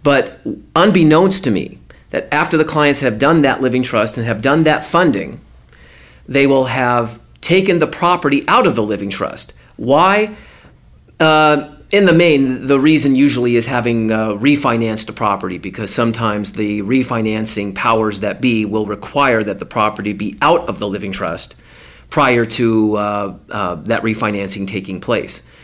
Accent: American